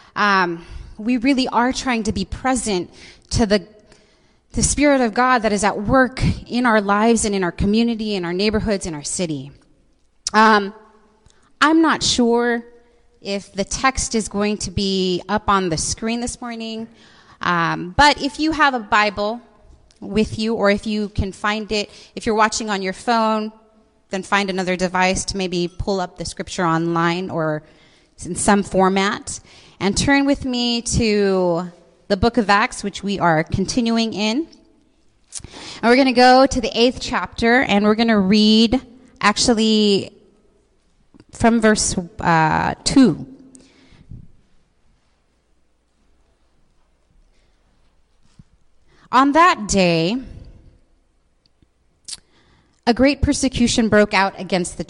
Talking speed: 140 wpm